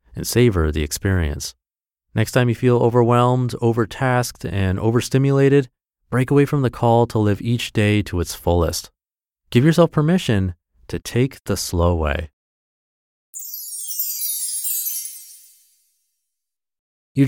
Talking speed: 115 wpm